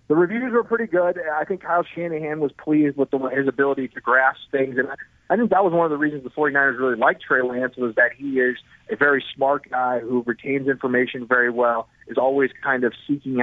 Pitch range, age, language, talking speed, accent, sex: 125-155 Hz, 40-59, English, 230 wpm, American, male